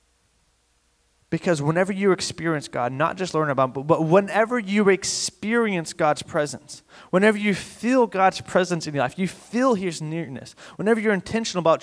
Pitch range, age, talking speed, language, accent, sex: 145-190 Hz, 20-39, 165 wpm, English, American, male